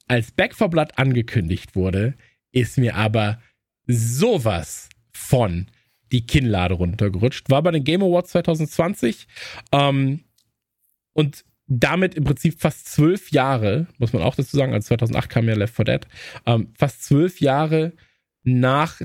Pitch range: 115-150 Hz